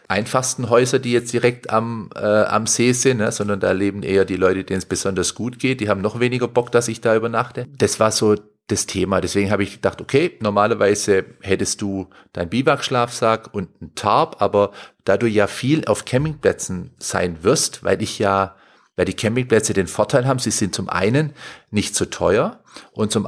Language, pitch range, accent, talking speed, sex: German, 95-115 Hz, German, 195 wpm, male